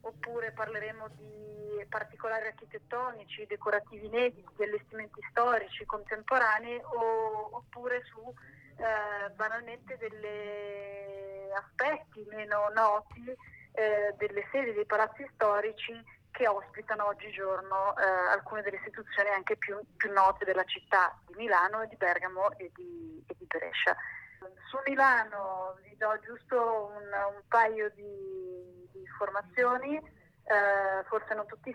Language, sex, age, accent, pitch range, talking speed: Italian, female, 30-49, native, 195-225 Hz, 115 wpm